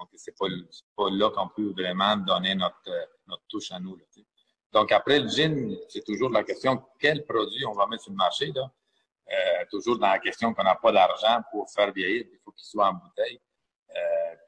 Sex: male